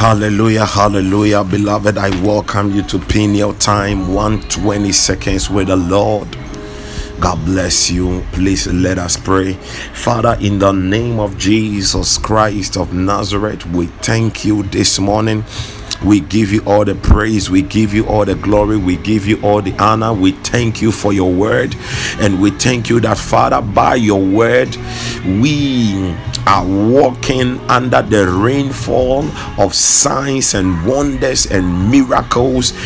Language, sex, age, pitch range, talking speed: English, male, 50-69, 95-115 Hz, 150 wpm